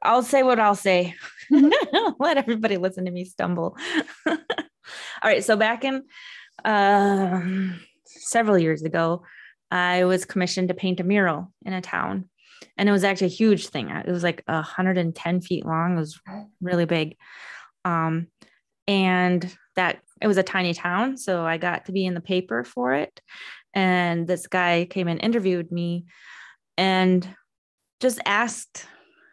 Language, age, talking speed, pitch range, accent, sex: English, 20-39, 155 wpm, 180-240 Hz, American, female